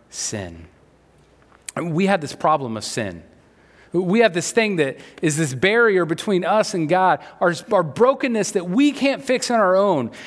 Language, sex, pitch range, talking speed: English, male, 150-230 Hz, 170 wpm